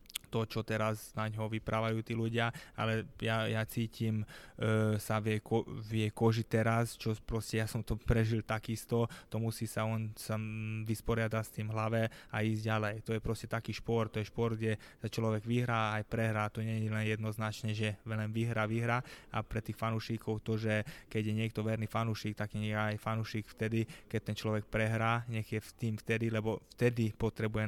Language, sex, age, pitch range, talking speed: Slovak, male, 20-39, 110-115 Hz, 190 wpm